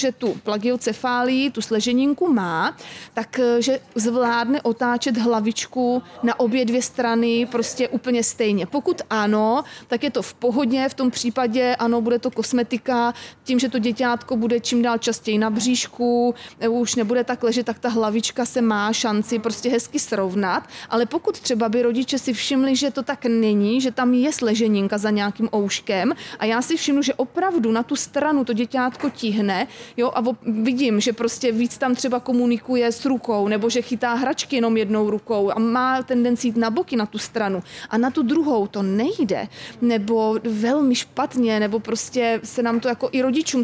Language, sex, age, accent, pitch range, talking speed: Czech, female, 30-49, native, 225-255 Hz, 175 wpm